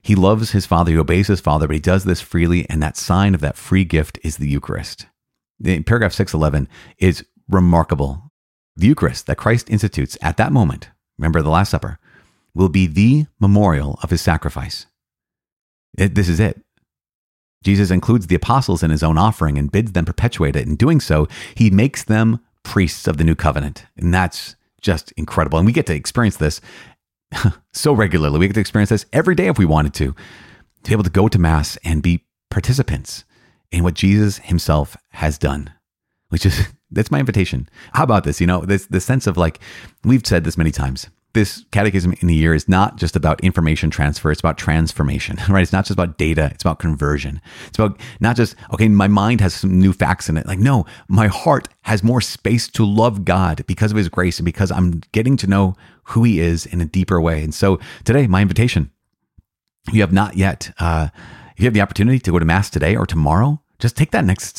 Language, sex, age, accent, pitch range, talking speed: English, male, 30-49, American, 80-105 Hz, 205 wpm